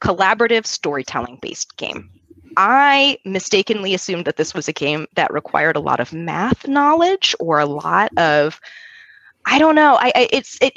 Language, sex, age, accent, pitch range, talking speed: English, female, 20-39, American, 155-230 Hz, 150 wpm